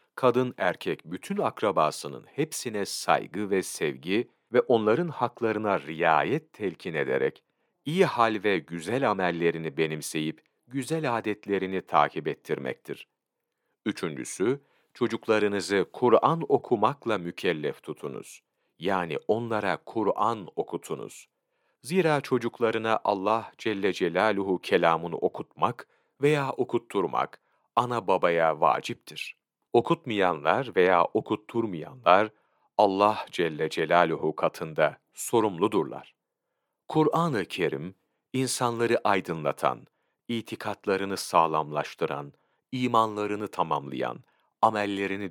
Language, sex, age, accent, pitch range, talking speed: Turkish, male, 40-59, native, 85-120 Hz, 80 wpm